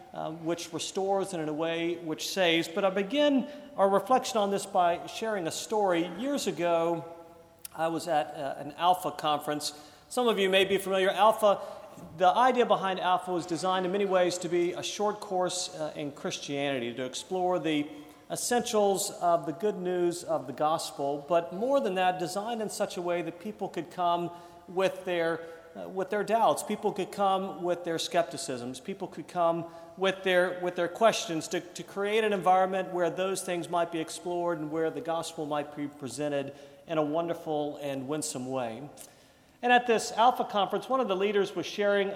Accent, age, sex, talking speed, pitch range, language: American, 40-59, male, 185 wpm, 165-195 Hz, English